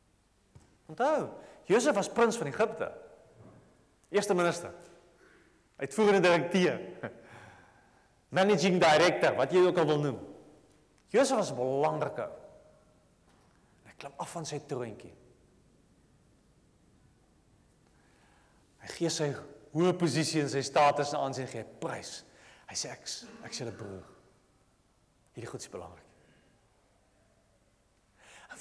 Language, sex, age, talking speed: English, male, 40-59, 115 wpm